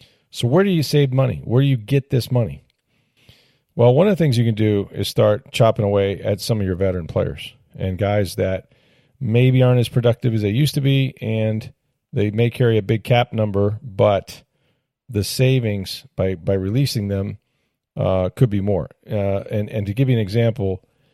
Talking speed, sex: 195 wpm, male